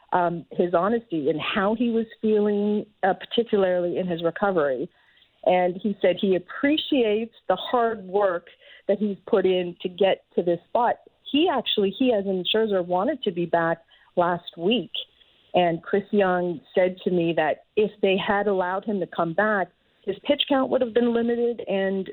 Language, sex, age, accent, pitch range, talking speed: English, female, 40-59, American, 175-210 Hz, 180 wpm